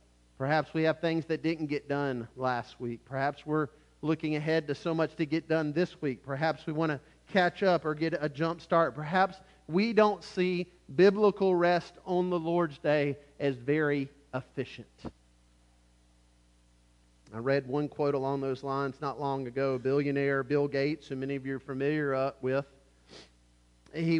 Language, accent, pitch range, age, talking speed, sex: English, American, 135-170 Hz, 40-59, 165 wpm, male